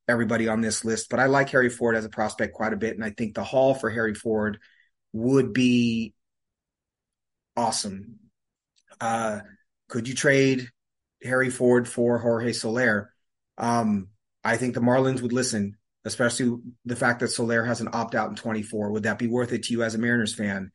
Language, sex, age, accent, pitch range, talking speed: English, male, 30-49, American, 110-130 Hz, 185 wpm